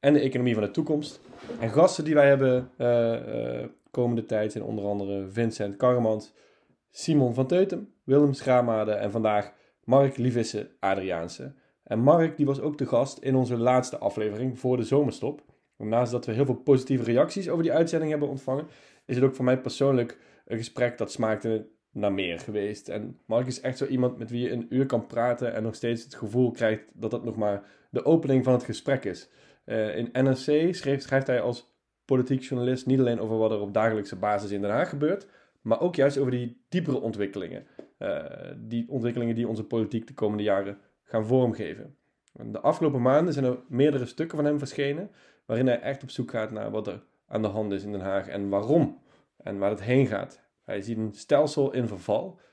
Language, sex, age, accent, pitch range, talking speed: Dutch, male, 20-39, Dutch, 110-135 Hz, 200 wpm